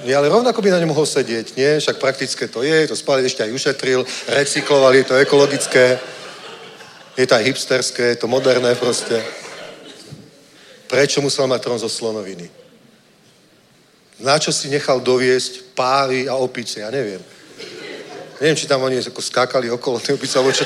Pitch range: 120-150 Hz